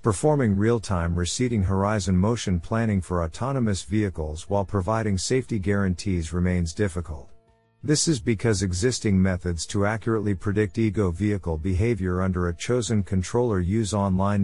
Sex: male